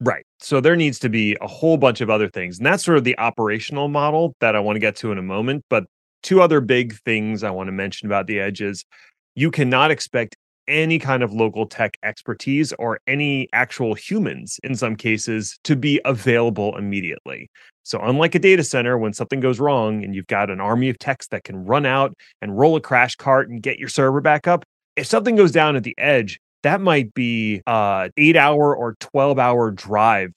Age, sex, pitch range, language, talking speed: 30-49, male, 110-145 Hz, English, 210 wpm